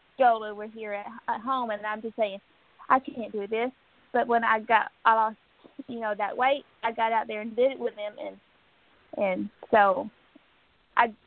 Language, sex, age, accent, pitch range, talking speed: English, female, 20-39, American, 205-235 Hz, 190 wpm